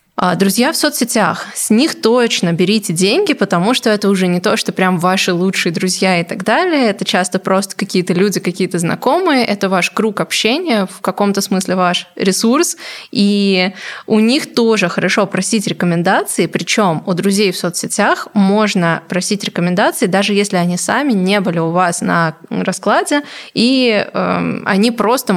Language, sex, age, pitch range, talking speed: Russian, female, 20-39, 185-230 Hz, 160 wpm